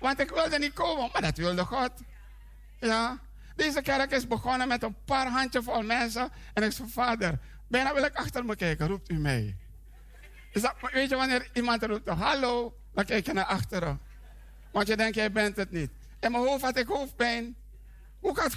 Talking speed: 185 wpm